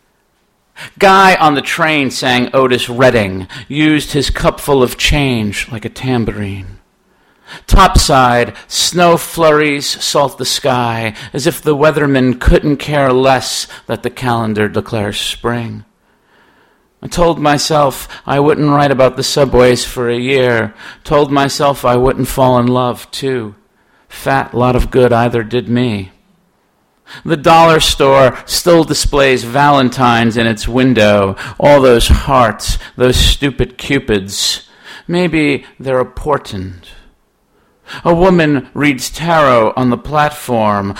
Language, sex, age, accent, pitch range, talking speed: English, male, 50-69, American, 120-145 Hz, 125 wpm